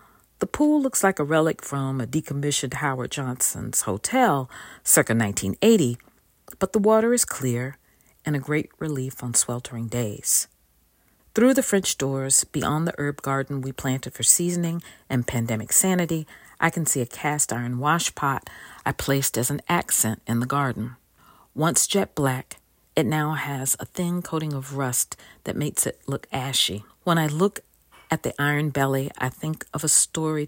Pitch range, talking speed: 125-155 Hz, 165 wpm